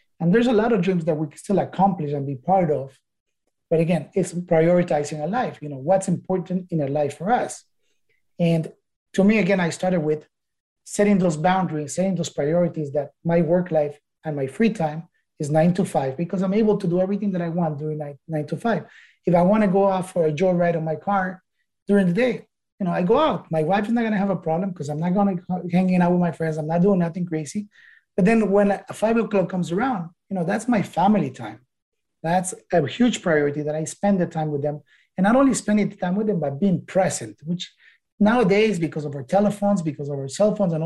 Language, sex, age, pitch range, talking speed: English, male, 30-49, 155-195 Hz, 235 wpm